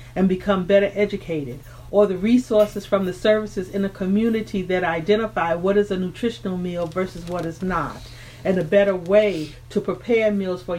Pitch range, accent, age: 170-210 Hz, American, 40-59